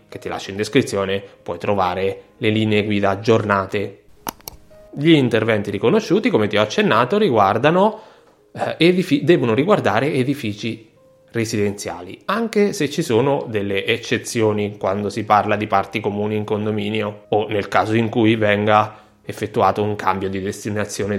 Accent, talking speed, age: native, 140 wpm, 20-39